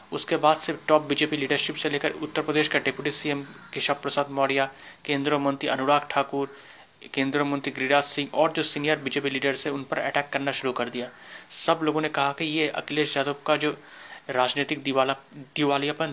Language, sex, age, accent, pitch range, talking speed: Hindi, male, 30-49, native, 135-150 Hz, 195 wpm